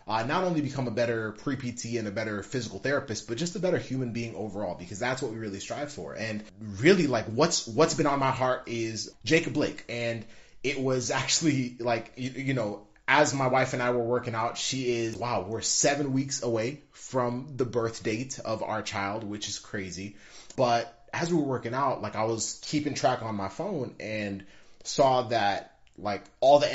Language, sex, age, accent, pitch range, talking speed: English, male, 30-49, American, 110-140 Hz, 205 wpm